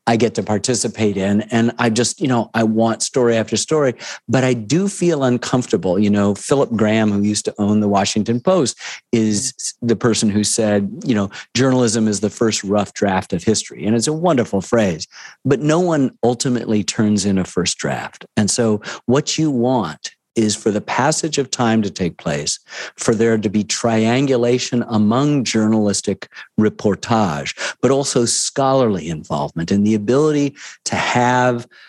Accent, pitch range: American, 105-125 Hz